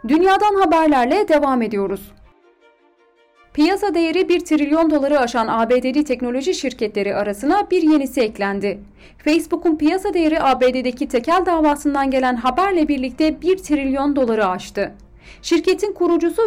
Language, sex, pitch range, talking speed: Turkish, female, 220-325 Hz, 115 wpm